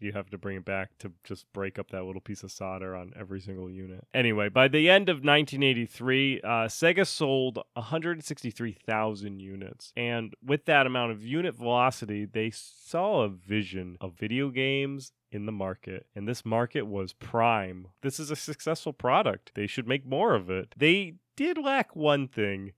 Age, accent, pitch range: 30-49, American, 105-135 Hz